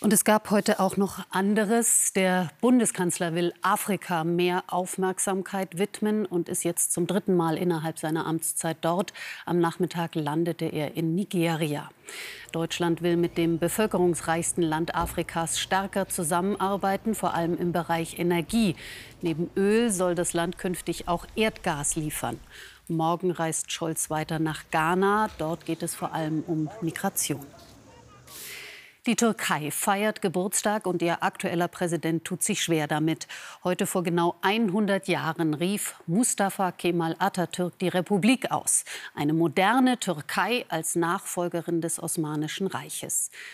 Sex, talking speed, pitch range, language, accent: female, 135 wpm, 165-195 Hz, German, German